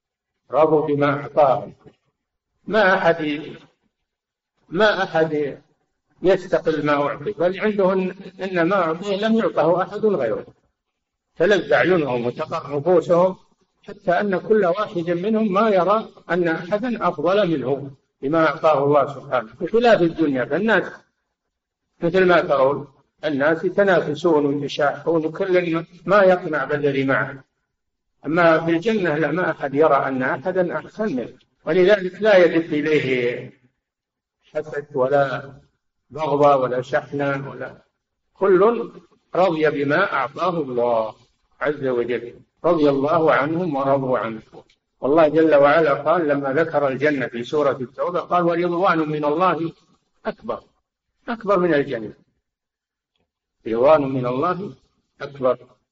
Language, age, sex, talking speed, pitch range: Arabic, 60-79, male, 115 wpm, 145-185 Hz